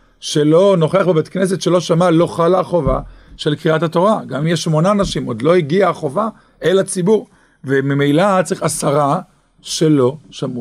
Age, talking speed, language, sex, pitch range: 50-69, 155 wpm, English, male, 150-180 Hz